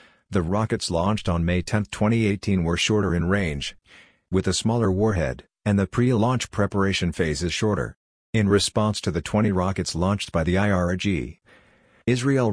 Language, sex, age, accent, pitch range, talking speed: English, male, 50-69, American, 90-105 Hz, 165 wpm